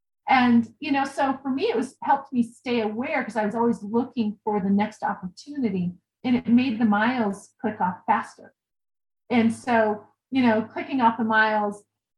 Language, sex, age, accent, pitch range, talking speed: English, female, 30-49, American, 220-275 Hz, 180 wpm